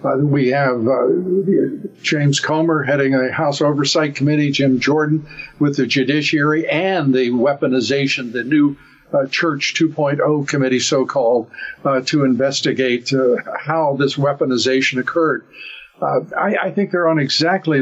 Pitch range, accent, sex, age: 135-160 Hz, American, male, 50-69